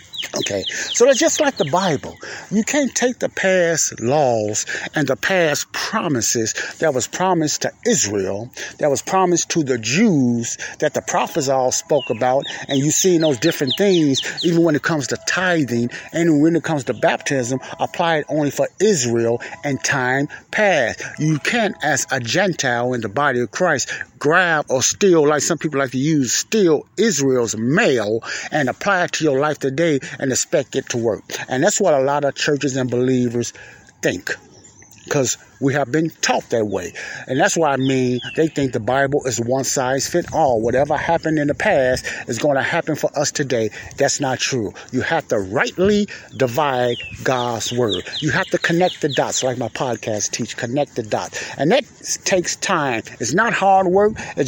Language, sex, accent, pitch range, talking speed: English, male, American, 125-170 Hz, 185 wpm